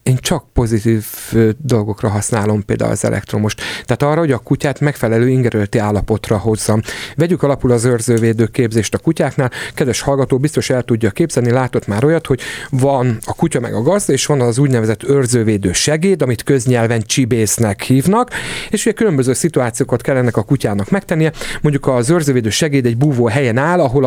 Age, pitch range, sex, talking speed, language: 40-59, 120-155 Hz, male, 170 wpm, Hungarian